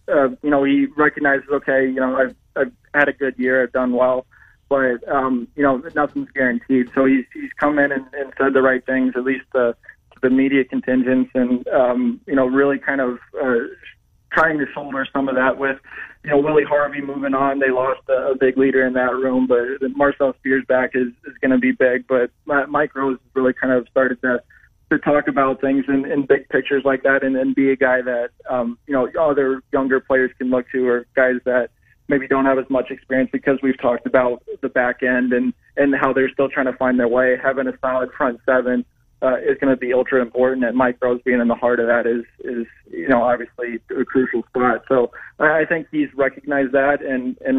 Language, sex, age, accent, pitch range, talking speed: English, male, 20-39, American, 125-135 Hz, 220 wpm